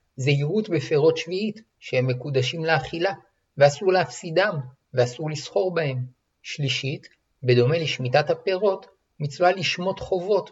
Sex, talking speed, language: male, 105 wpm, Hebrew